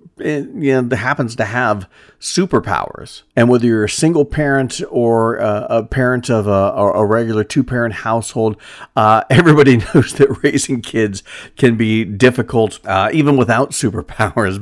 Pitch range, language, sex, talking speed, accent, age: 100-120 Hz, English, male, 150 wpm, American, 50-69